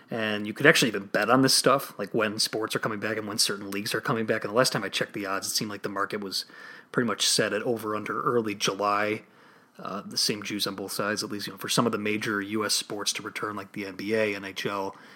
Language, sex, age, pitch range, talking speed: English, male, 30-49, 100-120 Hz, 270 wpm